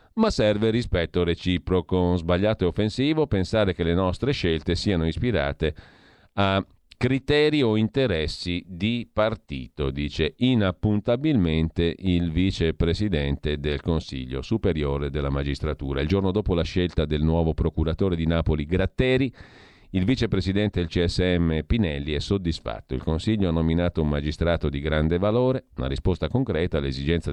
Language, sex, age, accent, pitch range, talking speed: Italian, male, 40-59, native, 75-100 Hz, 130 wpm